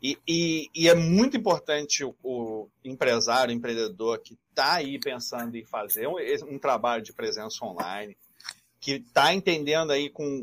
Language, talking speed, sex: Portuguese, 160 wpm, male